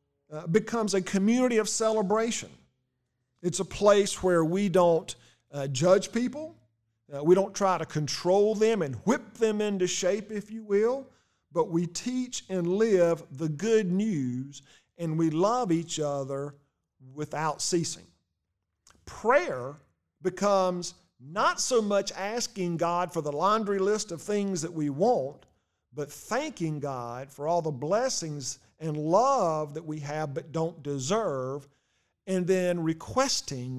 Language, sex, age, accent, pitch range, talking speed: English, male, 50-69, American, 145-210 Hz, 140 wpm